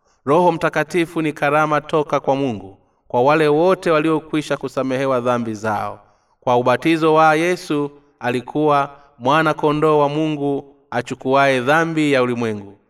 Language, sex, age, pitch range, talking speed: Swahili, male, 30-49, 125-155 Hz, 125 wpm